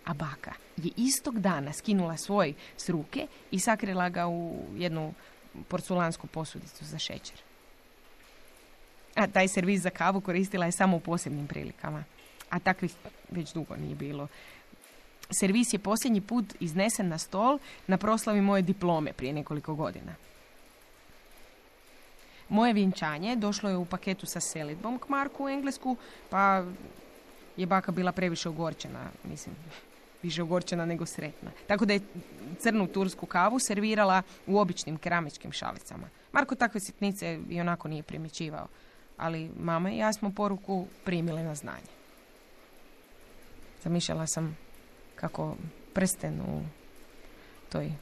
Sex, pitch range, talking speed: female, 165-200 Hz, 130 wpm